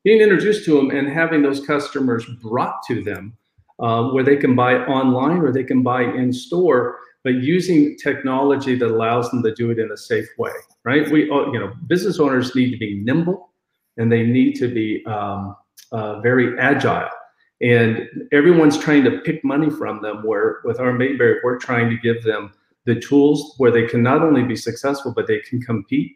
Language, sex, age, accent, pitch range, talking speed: English, male, 50-69, American, 115-150 Hz, 195 wpm